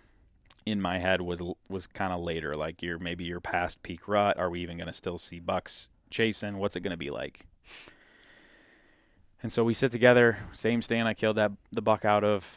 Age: 20-39